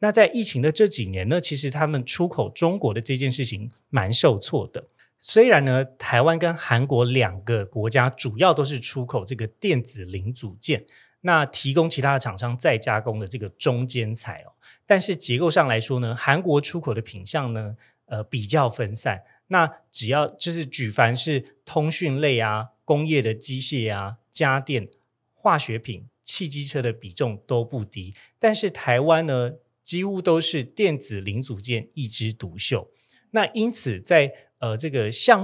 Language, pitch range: Chinese, 115-150 Hz